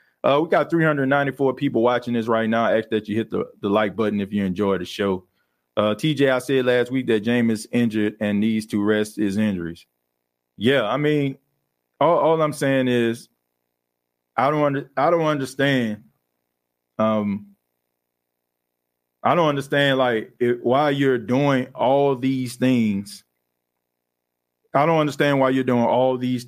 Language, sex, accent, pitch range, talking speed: English, male, American, 100-140 Hz, 165 wpm